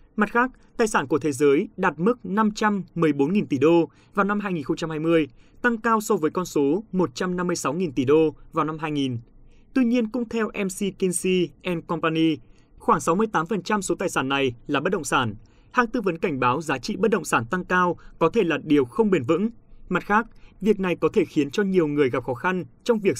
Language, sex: Vietnamese, male